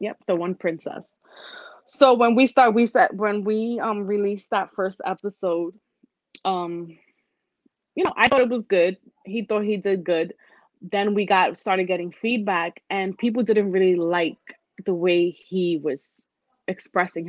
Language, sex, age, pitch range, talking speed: English, female, 20-39, 180-225 Hz, 160 wpm